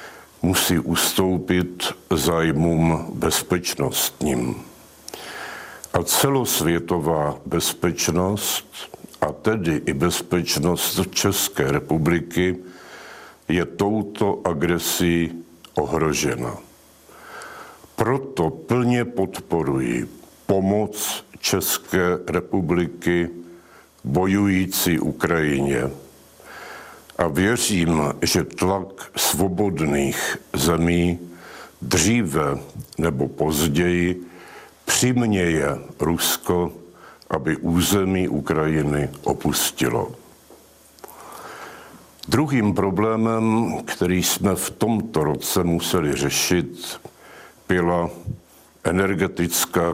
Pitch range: 80-95 Hz